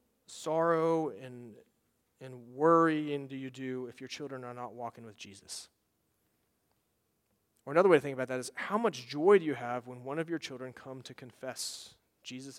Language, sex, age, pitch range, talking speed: English, male, 30-49, 125-165 Hz, 180 wpm